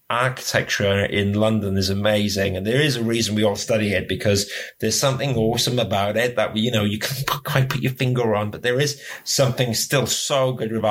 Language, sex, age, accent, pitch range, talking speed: English, male, 30-49, British, 110-135 Hz, 210 wpm